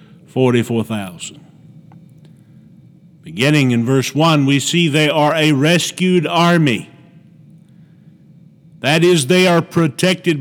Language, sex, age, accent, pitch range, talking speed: English, male, 50-69, American, 145-170 Hz, 105 wpm